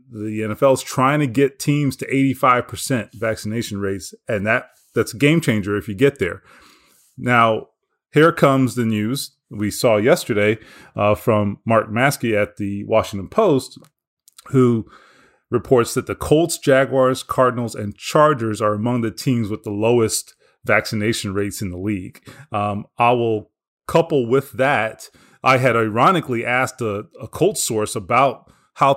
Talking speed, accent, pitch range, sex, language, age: 150 wpm, American, 110-140 Hz, male, English, 30-49